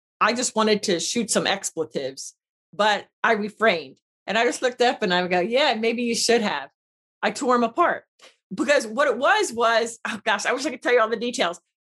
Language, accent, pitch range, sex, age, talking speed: English, American, 180-245 Hz, female, 40-59, 225 wpm